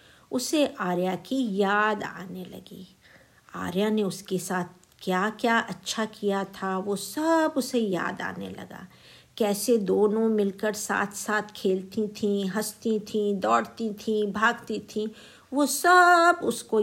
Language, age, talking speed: Hindi, 50-69, 130 wpm